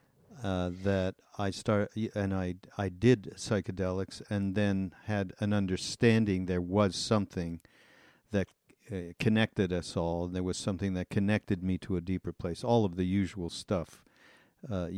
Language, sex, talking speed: English, male, 160 wpm